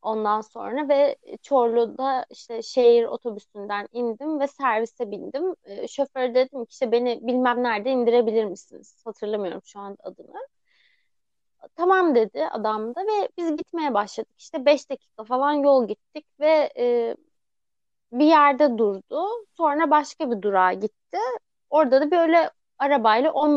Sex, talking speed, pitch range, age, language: female, 130 wpm, 235-320 Hz, 30-49, Turkish